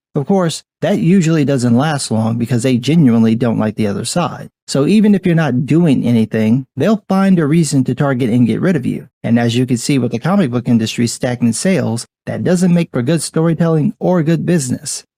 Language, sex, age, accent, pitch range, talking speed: English, male, 40-59, American, 125-180 Hz, 215 wpm